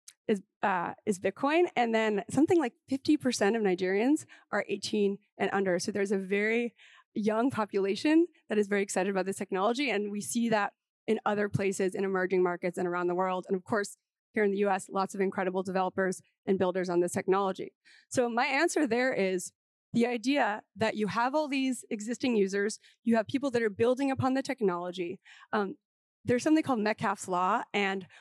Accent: American